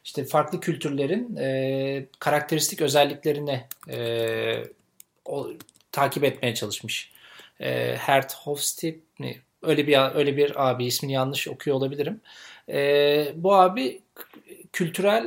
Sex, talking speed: male, 110 wpm